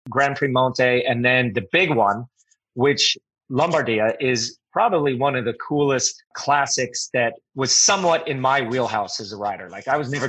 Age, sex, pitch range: 30-49, male, 120-145 Hz